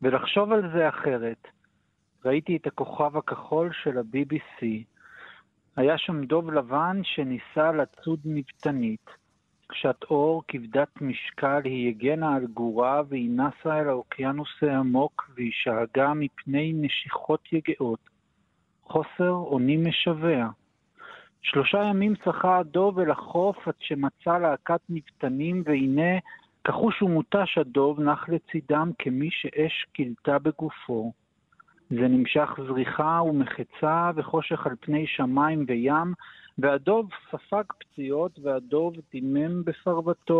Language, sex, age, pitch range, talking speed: Hebrew, male, 50-69, 135-165 Hz, 110 wpm